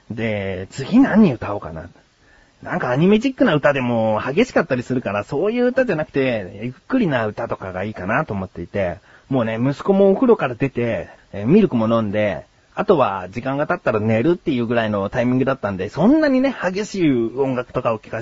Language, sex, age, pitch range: Japanese, male, 30-49, 110-170 Hz